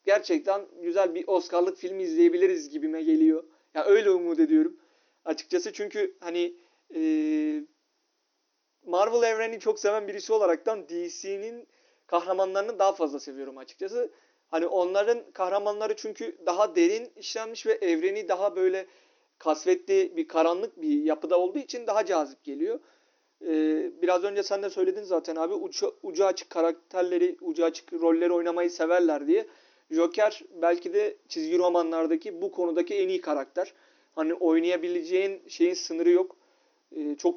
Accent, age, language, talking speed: native, 40-59, Turkish, 135 wpm